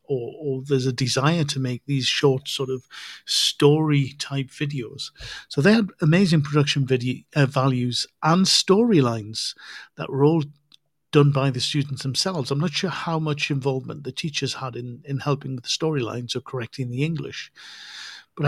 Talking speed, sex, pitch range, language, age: 160 wpm, male, 125-155 Hz, English, 50-69